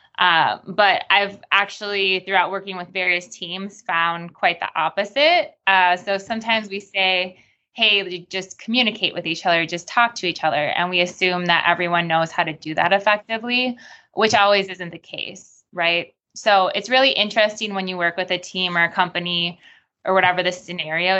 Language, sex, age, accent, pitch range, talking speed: English, female, 20-39, American, 175-210 Hz, 180 wpm